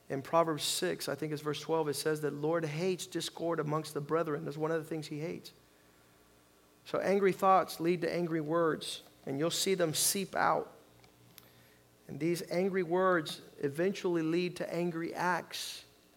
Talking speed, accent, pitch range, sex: 170 wpm, American, 150-215 Hz, male